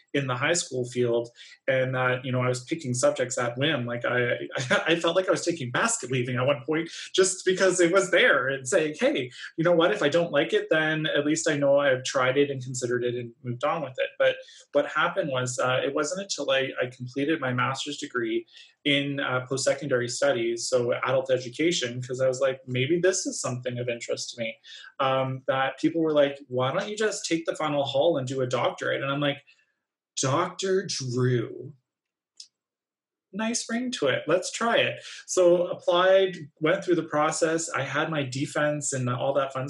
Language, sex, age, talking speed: English, male, 20-39, 205 wpm